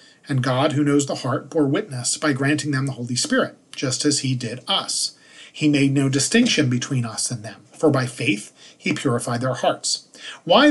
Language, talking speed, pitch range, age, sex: English, 195 wpm, 130-150 Hz, 40-59, male